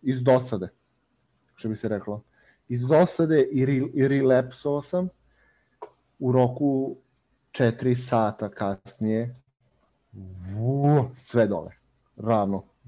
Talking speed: 100 wpm